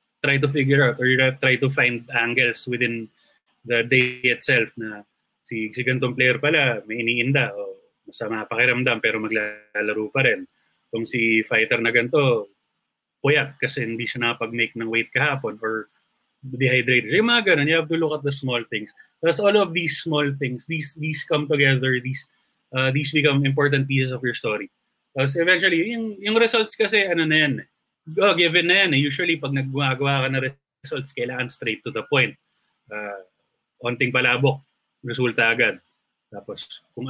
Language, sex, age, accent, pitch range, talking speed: English, male, 20-39, Filipino, 120-150 Hz, 175 wpm